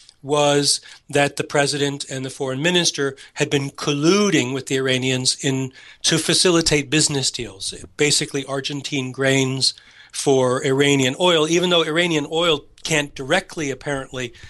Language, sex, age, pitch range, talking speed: English, male, 40-59, 130-160 Hz, 135 wpm